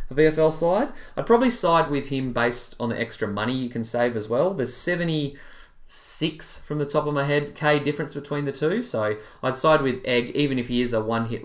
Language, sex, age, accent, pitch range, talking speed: English, male, 20-39, Australian, 115-155 Hz, 220 wpm